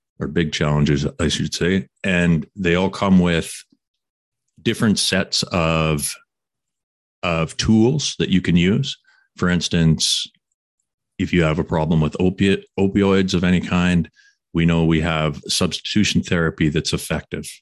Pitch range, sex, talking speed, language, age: 80-95 Hz, male, 140 wpm, English, 40-59